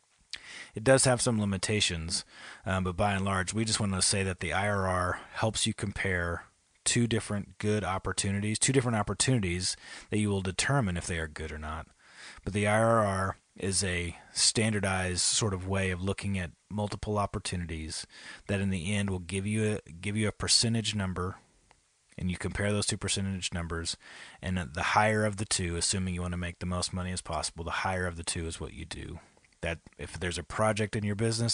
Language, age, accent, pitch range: English, 30-49, American, 90-105 Hz